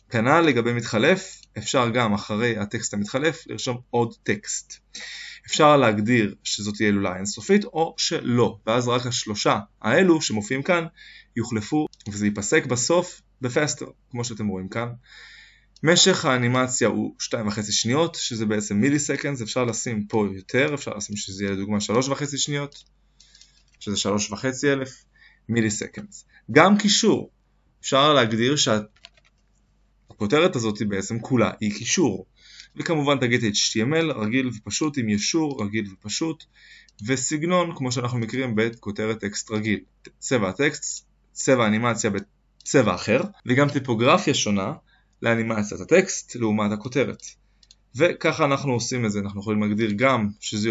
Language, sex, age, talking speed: Hebrew, male, 20-39, 130 wpm